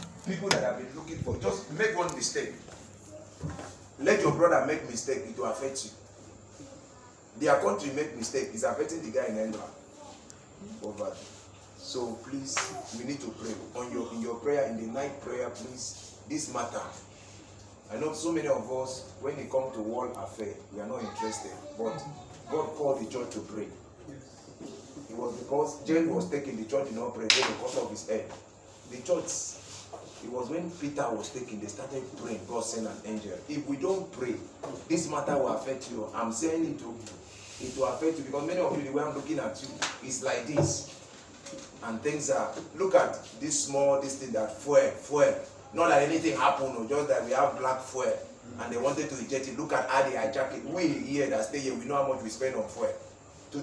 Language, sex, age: English, male, 40-59